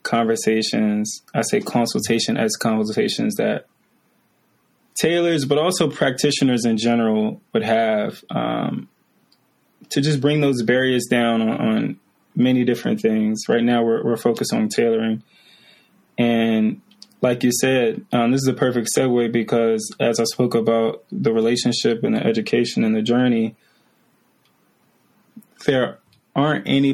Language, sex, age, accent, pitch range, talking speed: English, male, 20-39, American, 115-140 Hz, 135 wpm